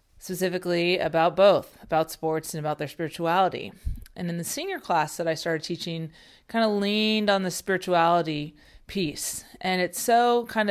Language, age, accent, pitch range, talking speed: English, 30-49, American, 160-185 Hz, 160 wpm